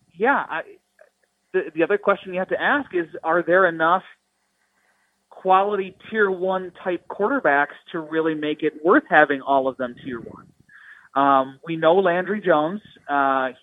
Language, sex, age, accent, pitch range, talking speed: English, male, 30-49, American, 150-195 Hz, 155 wpm